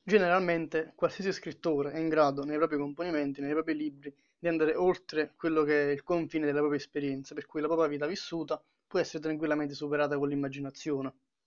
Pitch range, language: 145-165 Hz, Italian